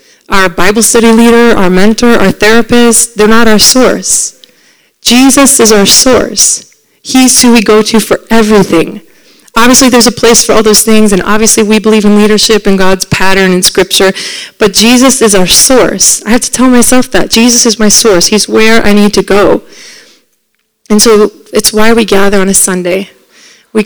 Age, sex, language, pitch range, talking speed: 30-49, female, English, 205-250 Hz, 185 wpm